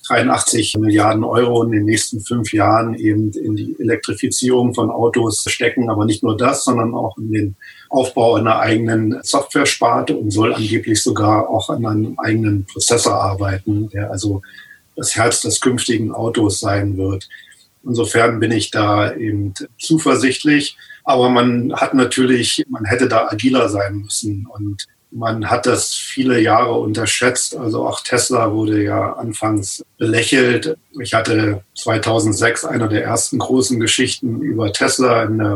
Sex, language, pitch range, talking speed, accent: male, German, 105-120 Hz, 150 wpm, German